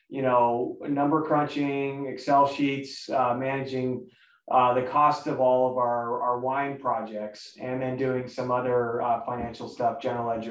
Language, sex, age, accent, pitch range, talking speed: English, male, 20-39, American, 120-140 Hz, 160 wpm